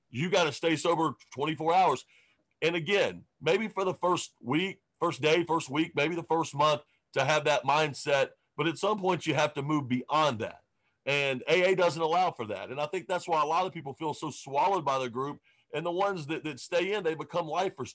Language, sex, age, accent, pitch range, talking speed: English, male, 40-59, American, 135-170 Hz, 225 wpm